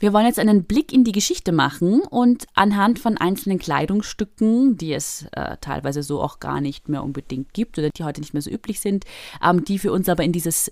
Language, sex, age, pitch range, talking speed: German, female, 20-39, 150-200 Hz, 225 wpm